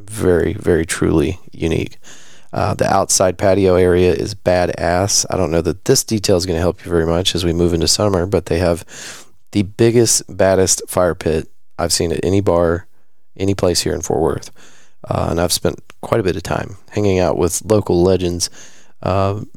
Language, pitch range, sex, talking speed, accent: English, 90-115 Hz, male, 195 wpm, American